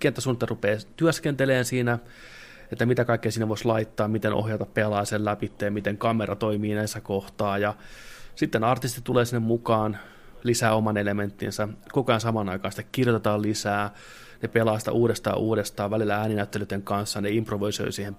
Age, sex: 30-49, male